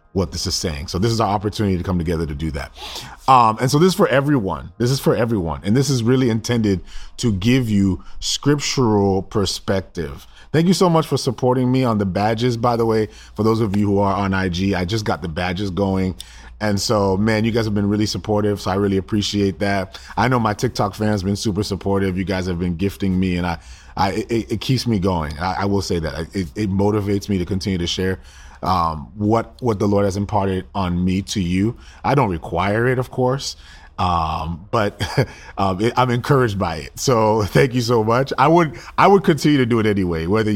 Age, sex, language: 30-49, male, English